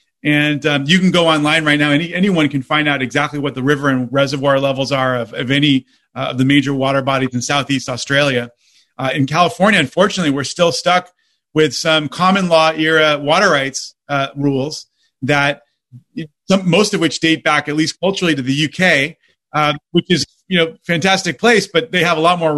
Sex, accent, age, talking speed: male, American, 30-49, 195 wpm